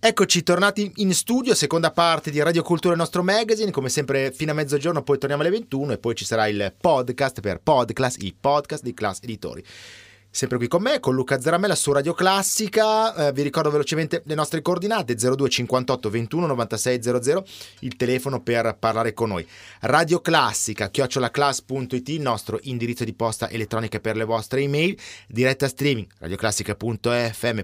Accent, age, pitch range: native, 30-49, 110-155 Hz